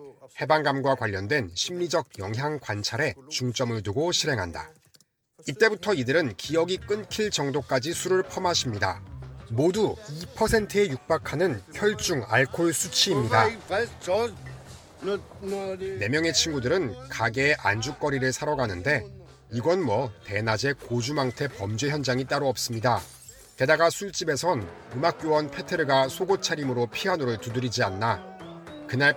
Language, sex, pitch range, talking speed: English, male, 115-160 Hz, 95 wpm